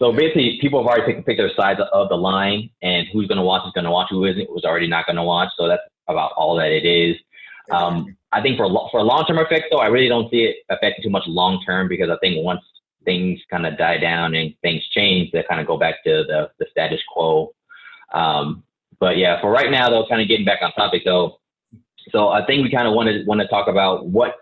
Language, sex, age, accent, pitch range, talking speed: English, male, 30-49, American, 90-115 Hz, 250 wpm